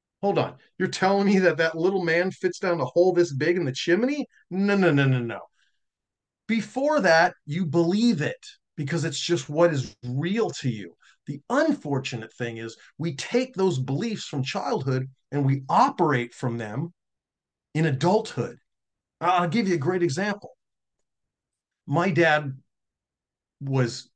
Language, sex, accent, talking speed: English, male, American, 155 wpm